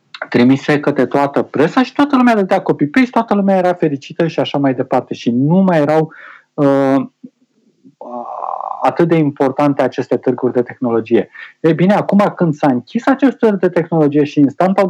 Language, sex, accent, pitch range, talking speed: Romanian, male, native, 130-180 Hz, 175 wpm